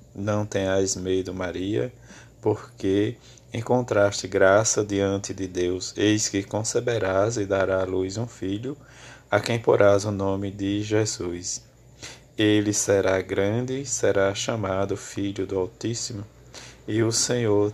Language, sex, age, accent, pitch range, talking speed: Portuguese, male, 20-39, Brazilian, 100-115 Hz, 125 wpm